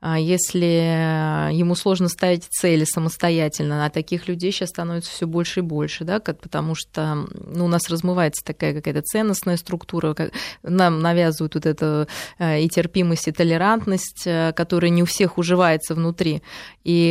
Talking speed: 140 wpm